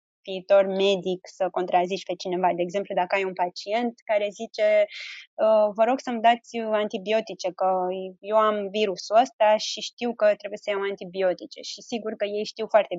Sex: female